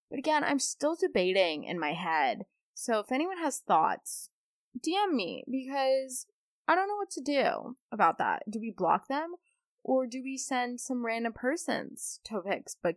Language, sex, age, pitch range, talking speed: English, female, 20-39, 195-265 Hz, 175 wpm